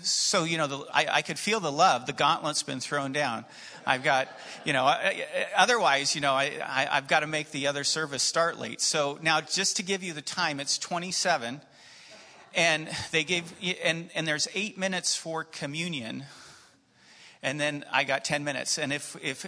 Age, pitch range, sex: 40-59, 140-185 Hz, male